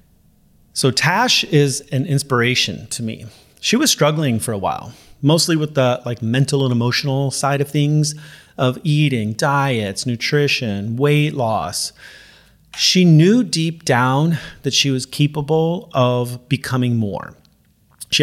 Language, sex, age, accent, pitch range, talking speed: English, male, 40-59, American, 120-150 Hz, 135 wpm